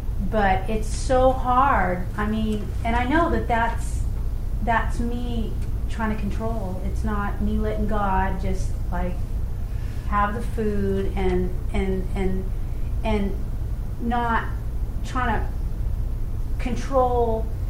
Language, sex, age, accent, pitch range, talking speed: English, female, 40-59, American, 95-110 Hz, 115 wpm